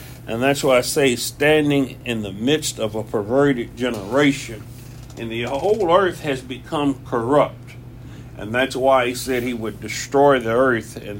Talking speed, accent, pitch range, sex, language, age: 165 wpm, American, 120-135 Hz, male, English, 60-79